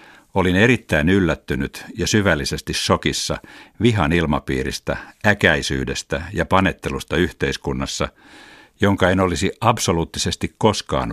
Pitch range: 75-95 Hz